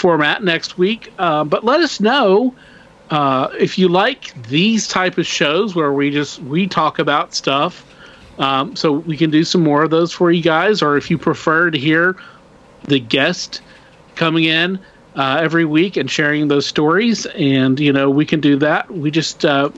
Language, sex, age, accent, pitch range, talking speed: English, male, 40-59, American, 145-180 Hz, 190 wpm